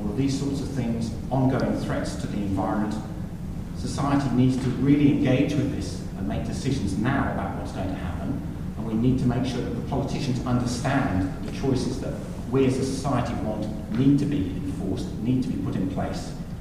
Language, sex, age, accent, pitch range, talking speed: English, male, 40-59, British, 100-140 Hz, 190 wpm